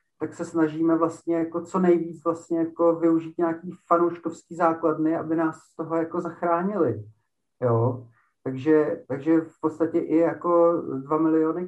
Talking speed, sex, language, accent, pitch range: 145 wpm, male, Czech, native, 150-165 Hz